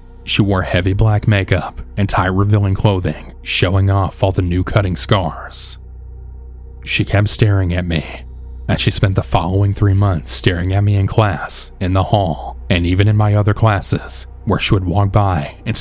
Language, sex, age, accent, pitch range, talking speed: English, male, 30-49, American, 80-100 Hz, 180 wpm